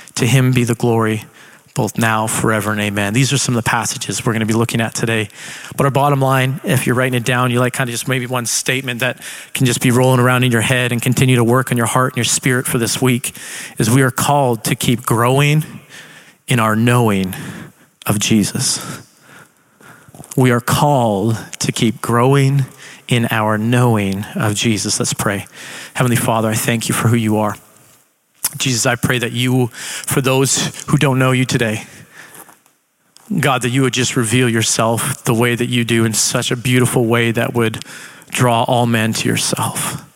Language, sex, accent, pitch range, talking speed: English, male, American, 115-130 Hz, 195 wpm